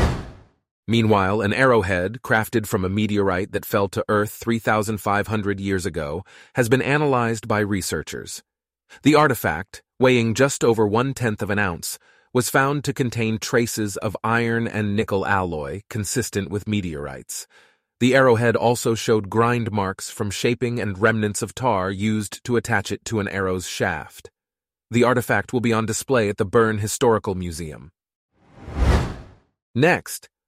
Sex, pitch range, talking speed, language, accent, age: male, 100-120 Hz, 145 wpm, English, American, 30-49